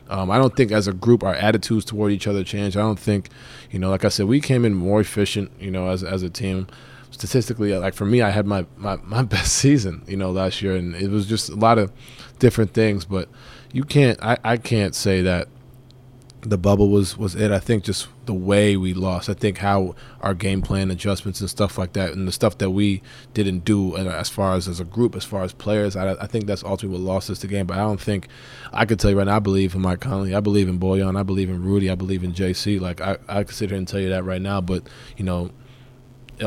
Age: 20-39